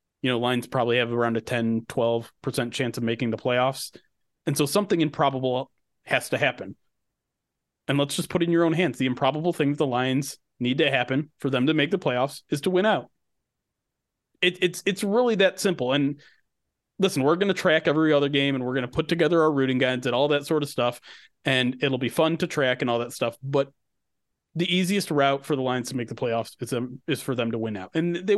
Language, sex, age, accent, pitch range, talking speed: English, male, 30-49, American, 125-160 Hz, 230 wpm